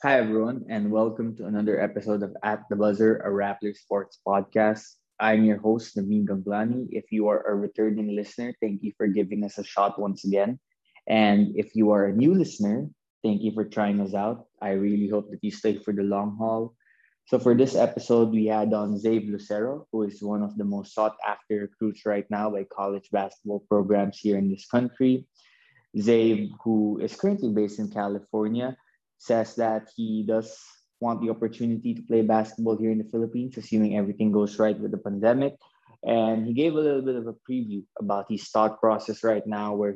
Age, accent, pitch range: 20-39, Filipino, 105-115 Hz